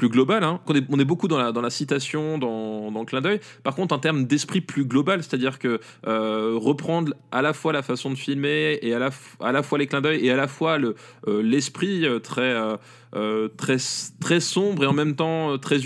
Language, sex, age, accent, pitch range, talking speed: French, male, 20-39, French, 120-155 Hz, 230 wpm